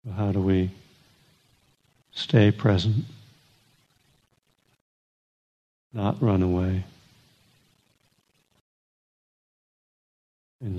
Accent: American